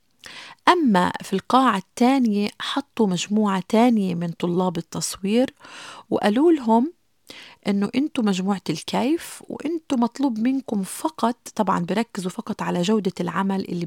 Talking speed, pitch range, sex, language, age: 115 wpm, 180-235 Hz, female, Arabic, 30-49